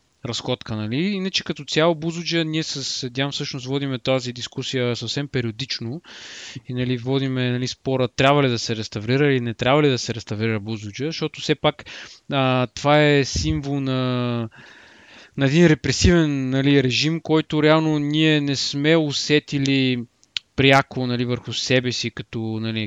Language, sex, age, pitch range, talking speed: Bulgarian, male, 20-39, 120-150 Hz, 155 wpm